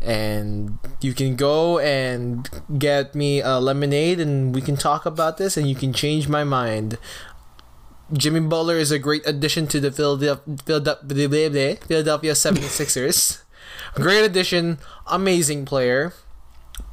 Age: 20-39